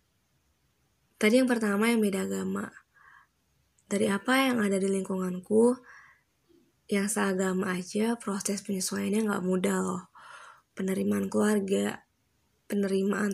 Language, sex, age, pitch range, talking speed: Indonesian, female, 20-39, 195-220 Hz, 105 wpm